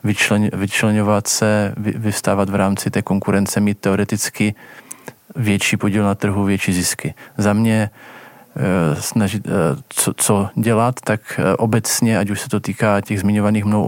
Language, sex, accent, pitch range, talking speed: Czech, male, native, 100-115 Hz, 145 wpm